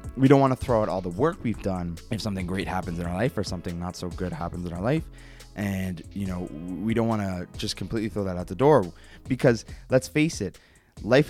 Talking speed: 245 wpm